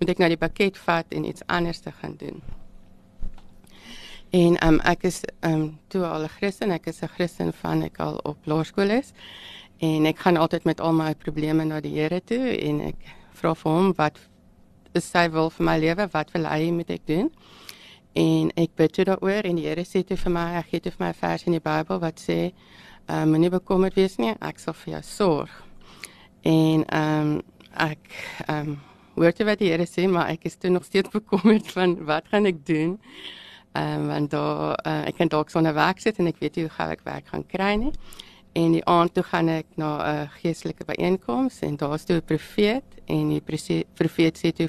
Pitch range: 155-185 Hz